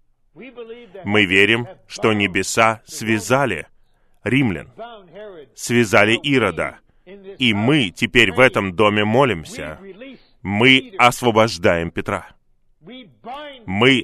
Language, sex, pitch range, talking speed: Russian, male, 105-150 Hz, 80 wpm